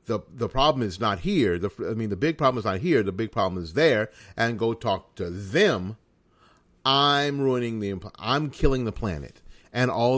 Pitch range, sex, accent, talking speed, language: 90-125 Hz, male, American, 200 wpm, English